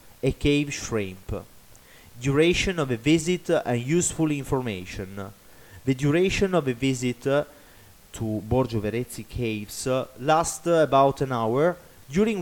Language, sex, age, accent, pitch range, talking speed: English, male, 30-49, Italian, 115-150 Hz, 135 wpm